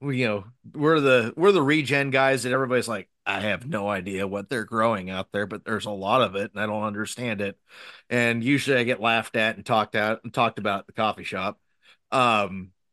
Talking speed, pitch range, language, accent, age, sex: 225 wpm, 105-120 Hz, English, American, 30-49, male